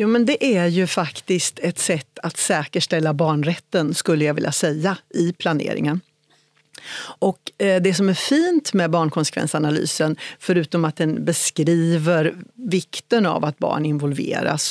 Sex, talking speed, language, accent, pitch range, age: female, 140 wpm, Swedish, native, 160-200 Hz, 40-59